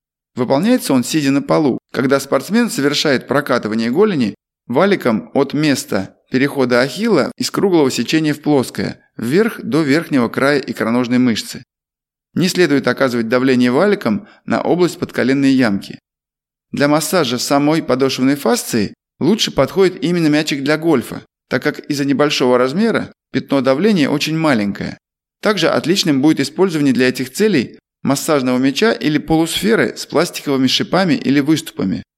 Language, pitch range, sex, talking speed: Russian, 130-160 Hz, male, 130 wpm